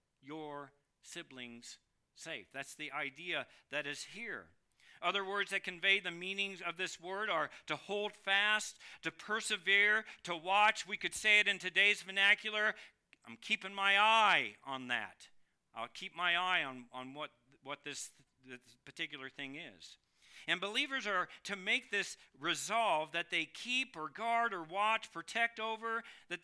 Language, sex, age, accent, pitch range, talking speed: English, male, 50-69, American, 135-200 Hz, 155 wpm